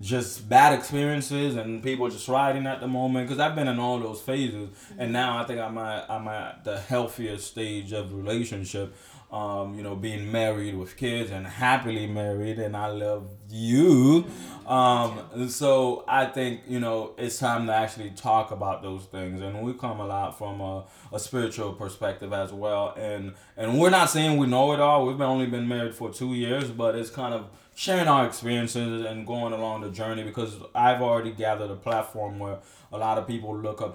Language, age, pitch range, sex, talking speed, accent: English, 20-39, 105-125 Hz, male, 195 wpm, American